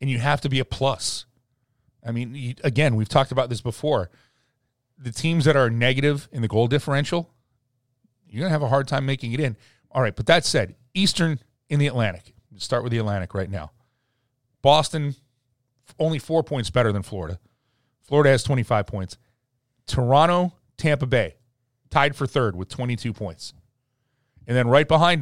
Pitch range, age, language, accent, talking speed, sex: 115-135 Hz, 40-59, English, American, 180 wpm, male